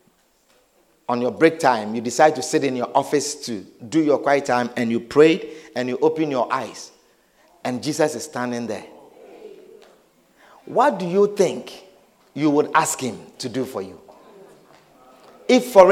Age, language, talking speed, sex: 50-69, English, 160 wpm, male